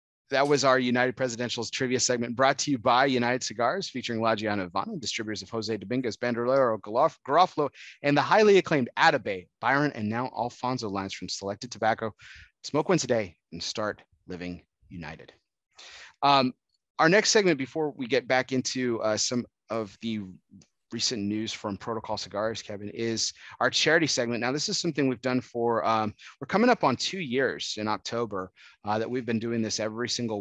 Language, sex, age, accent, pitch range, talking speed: English, male, 30-49, American, 105-125 Hz, 180 wpm